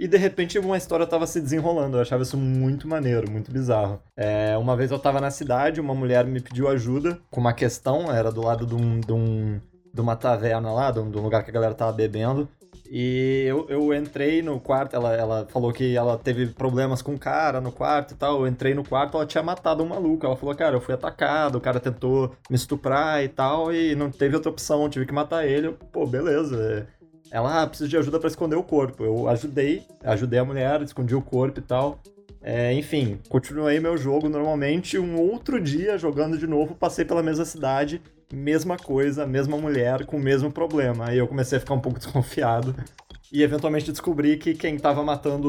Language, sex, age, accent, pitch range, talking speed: Portuguese, male, 20-39, Brazilian, 125-155 Hz, 215 wpm